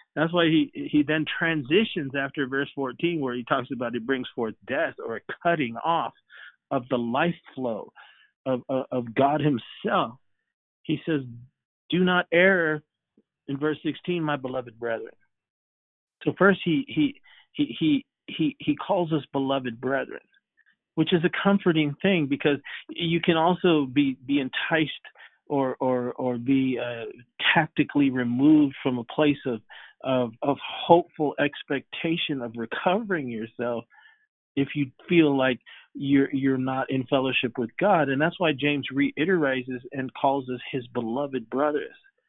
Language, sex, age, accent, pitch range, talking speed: English, male, 50-69, American, 130-160 Hz, 150 wpm